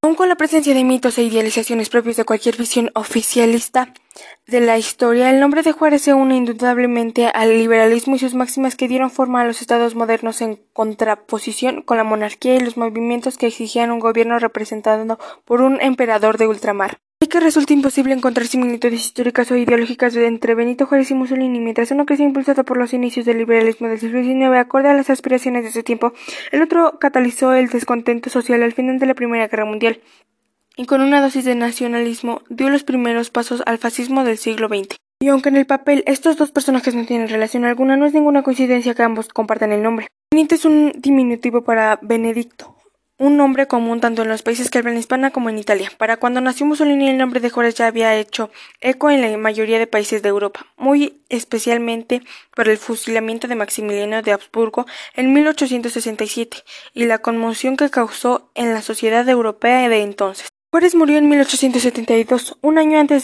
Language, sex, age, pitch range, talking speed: Spanish, female, 10-29, 230-265 Hz, 190 wpm